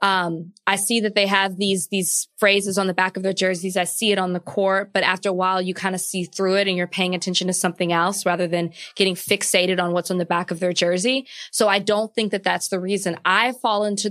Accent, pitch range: American, 185-225 Hz